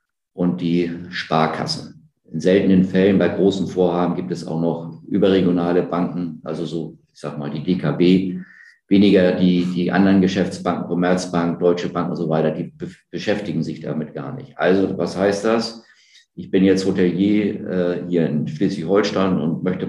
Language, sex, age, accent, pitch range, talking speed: German, male, 50-69, German, 85-100 Hz, 165 wpm